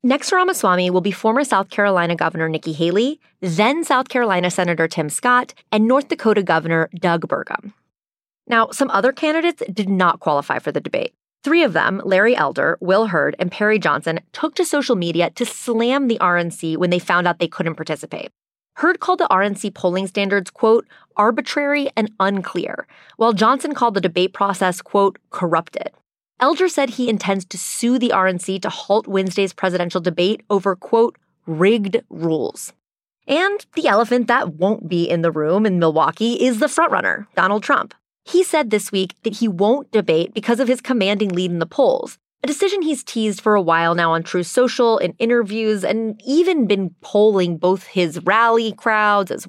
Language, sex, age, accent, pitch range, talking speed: English, female, 30-49, American, 180-245 Hz, 175 wpm